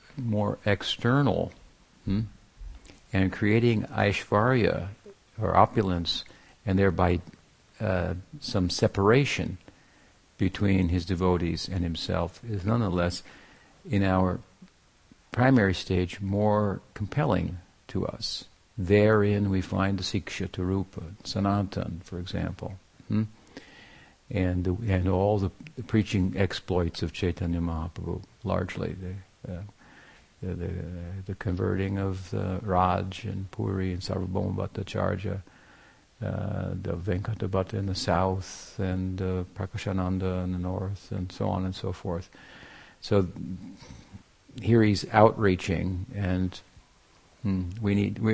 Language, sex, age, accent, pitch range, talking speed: English, male, 50-69, American, 90-105 Hz, 115 wpm